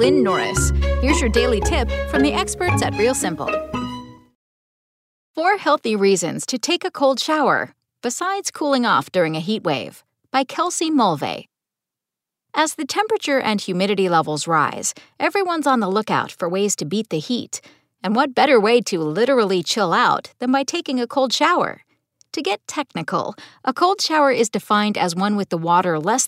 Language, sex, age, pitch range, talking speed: English, female, 40-59, 185-285 Hz, 170 wpm